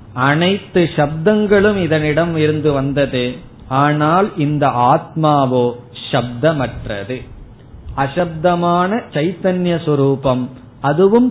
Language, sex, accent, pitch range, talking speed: Tamil, male, native, 130-165 Hz, 70 wpm